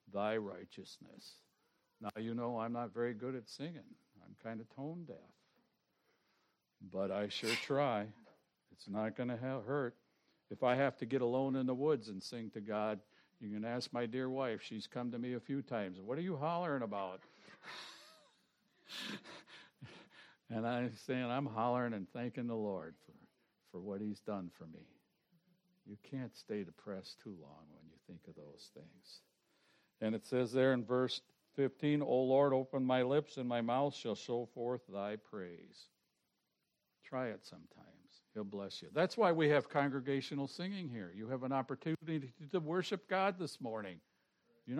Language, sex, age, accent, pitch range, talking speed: English, male, 60-79, American, 110-145 Hz, 170 wpm